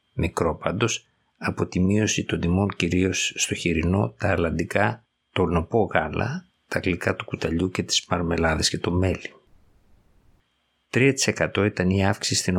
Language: Greek